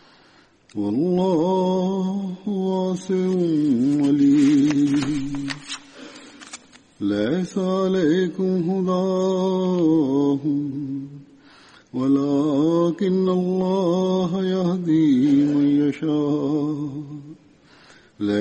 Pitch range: 145-185 Hz